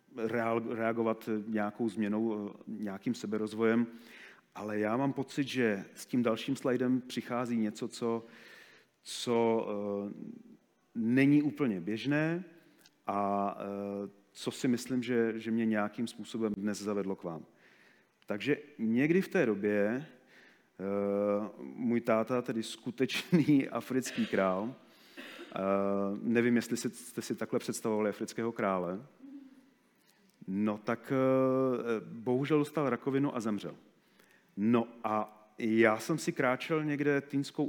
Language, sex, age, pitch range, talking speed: Czech, male, 40-59, 110-130 Hz, 110 wpm